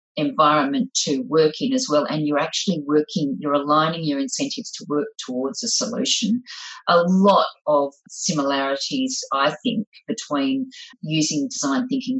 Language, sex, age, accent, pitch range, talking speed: English, female, 40-59, Australian, 150-245 Hz, 145 wpm